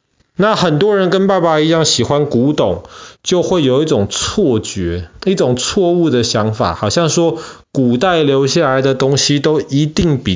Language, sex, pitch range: Chinese, male, 120-160 Hz